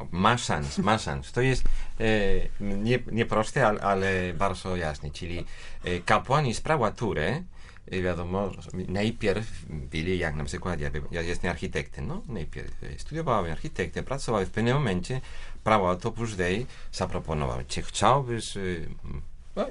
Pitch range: 80-105 Hz